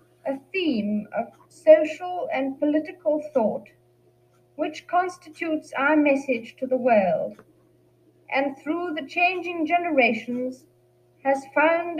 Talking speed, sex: 105 wpm, female